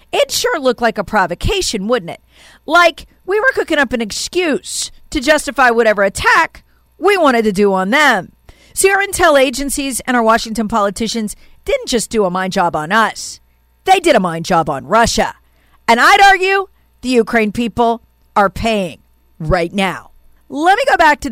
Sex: female